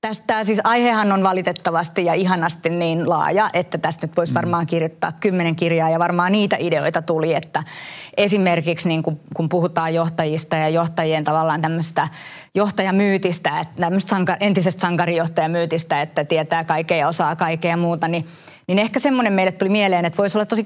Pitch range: 165-195 Hz